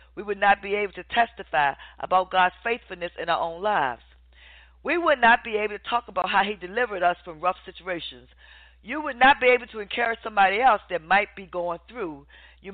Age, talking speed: 40-59, 205 wpm